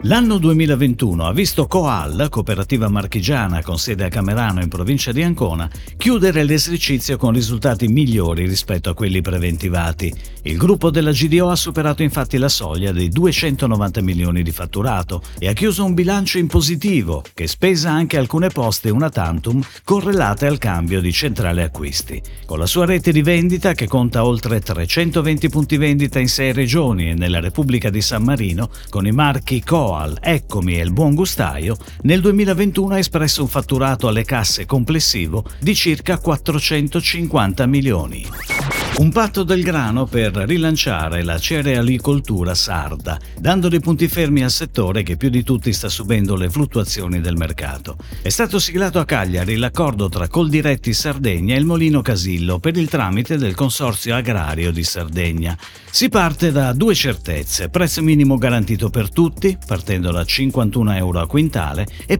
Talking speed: 160 wpm